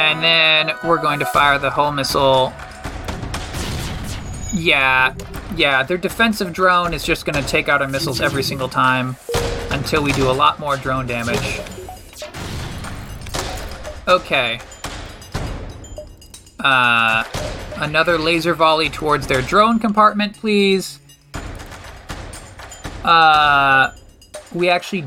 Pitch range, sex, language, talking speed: 125-185 Hz, male, English, 110 wpm